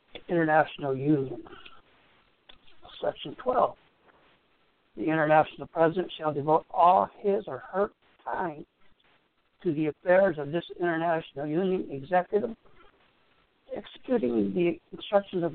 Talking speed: 100 wpm